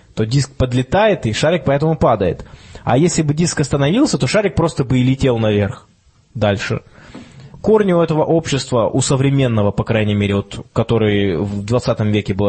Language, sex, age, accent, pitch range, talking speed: Russian, male, 20-39, native, 110-145 Hz, 170 wpm